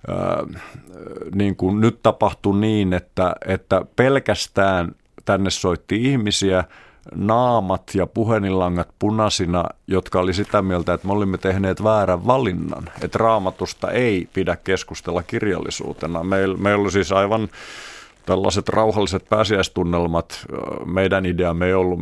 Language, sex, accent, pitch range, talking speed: Finnish, male, native, 90-110 Hz, 120 wpm